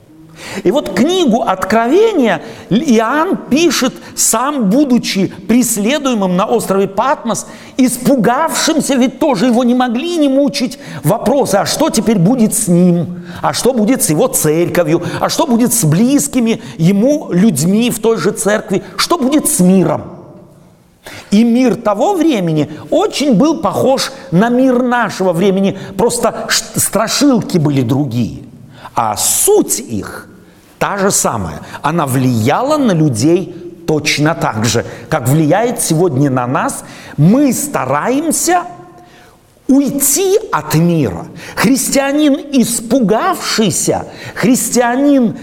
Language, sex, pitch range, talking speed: Russian, male, 175-265 Hz, 120 wpm